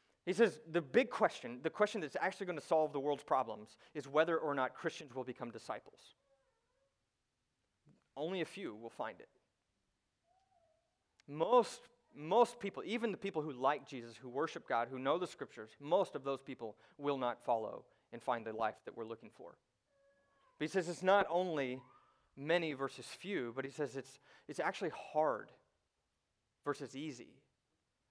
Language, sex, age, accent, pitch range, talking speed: English, male, 30-49, American, 130-190 Hz, 165 wpm